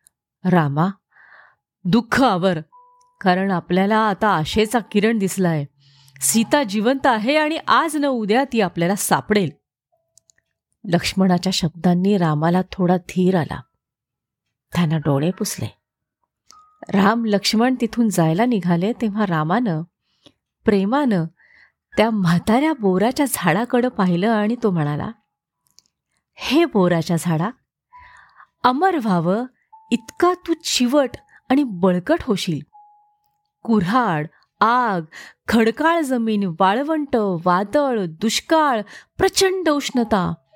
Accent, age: native, 30-49